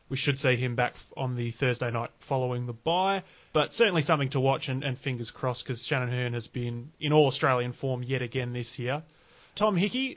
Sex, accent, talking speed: male, Australian, 210 wpm